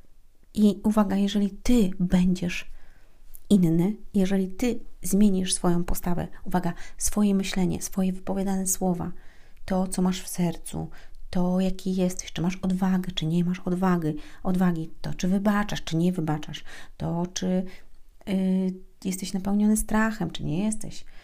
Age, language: 40-59, Polish